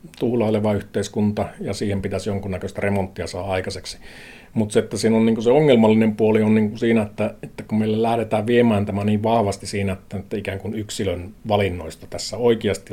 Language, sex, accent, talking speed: Finnish, male, native, 160 wpm